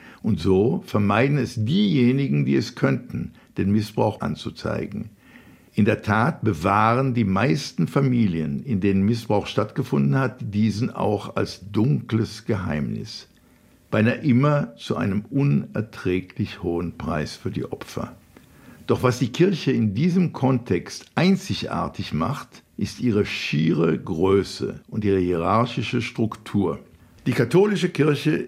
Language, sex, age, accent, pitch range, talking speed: German, male, 60-79, German, 100-135 Hz, 120 wpm